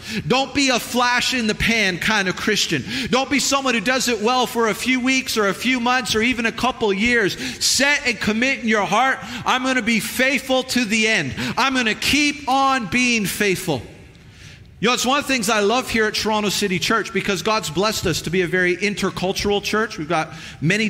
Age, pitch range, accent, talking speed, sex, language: 40-59, 180-230 Hz, American, 215 wpm, male, English